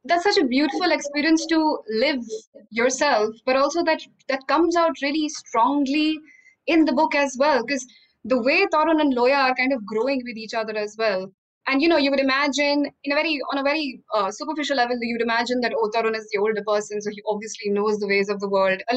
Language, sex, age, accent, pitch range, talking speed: English, female, 20-39, Indian, 240-315 Hz, 220 wpm